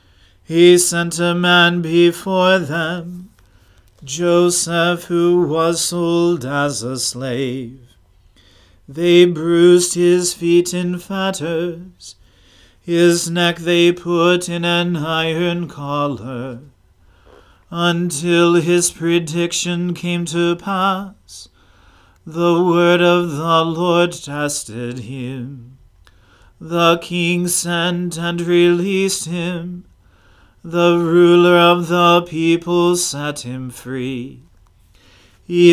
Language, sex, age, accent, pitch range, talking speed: English, male, 40-59, American, 130-175 Hz, 90 wpm